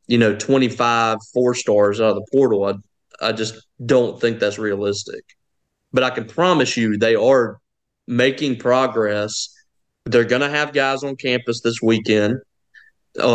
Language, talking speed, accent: English, 155 wpm, American